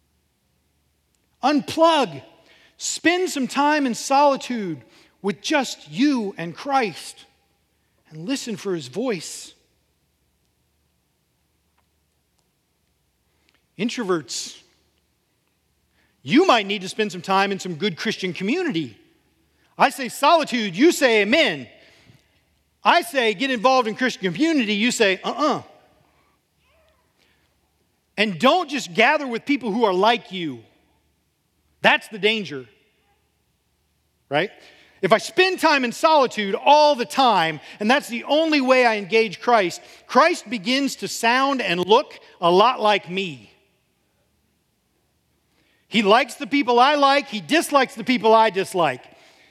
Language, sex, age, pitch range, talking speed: English, male, 40-59, 170-280 Hz, 120 wpm